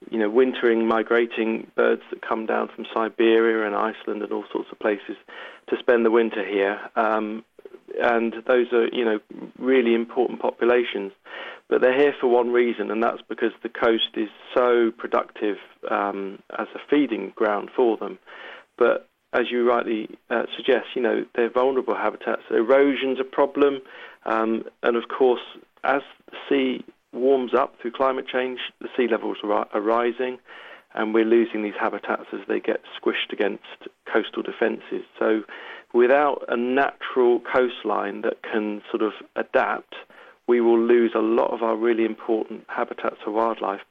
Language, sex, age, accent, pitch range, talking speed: English, male, 40-59, British, 115-135 Hz, 160 wpm